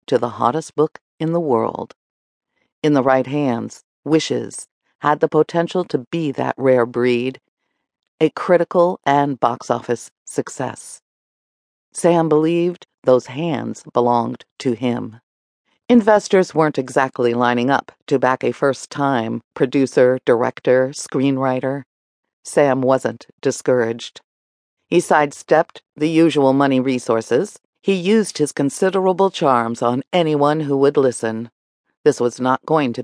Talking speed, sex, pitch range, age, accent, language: 125 wpm, female, 125-160 Hz, 50-69, American, English